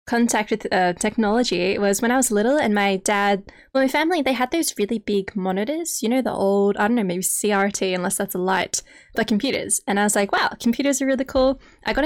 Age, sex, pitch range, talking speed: 10-29, female, 195-245 Hz, 235 wpm